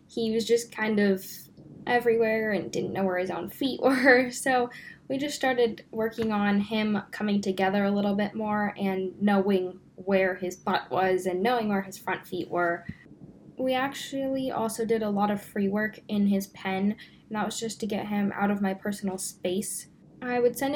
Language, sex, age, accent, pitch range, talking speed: English, female, 10-29, American, 195-230 Hz, 195 wpm